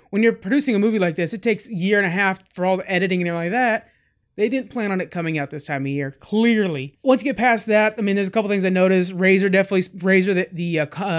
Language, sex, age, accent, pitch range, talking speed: English, male, 20-39, American, 175-205 Hz, 290 wpm